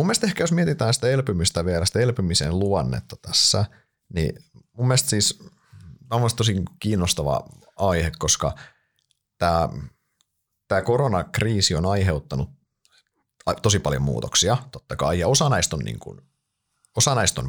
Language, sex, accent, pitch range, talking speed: Finnish, male, native, 80-115 Hz, 130 wpm